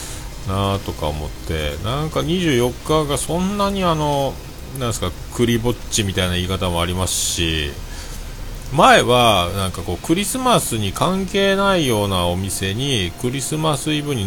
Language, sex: Japanese, male